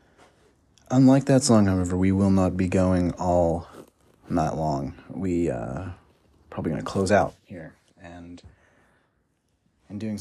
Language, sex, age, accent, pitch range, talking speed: English, male, 30-49, American, 85-105 Hz, 140 wpm